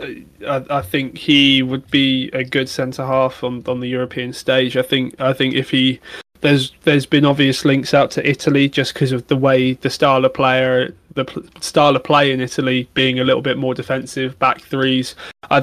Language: English